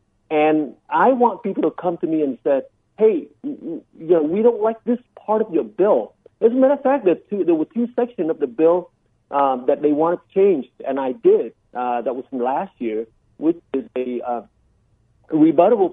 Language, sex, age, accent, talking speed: English, male, 50-69, American, 200 wpm